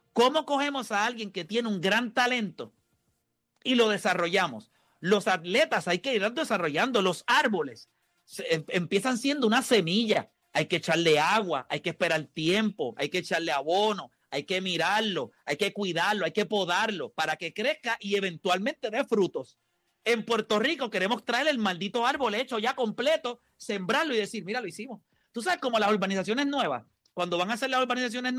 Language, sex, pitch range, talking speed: Spanish, male, 165-225 Hz, 170 wpm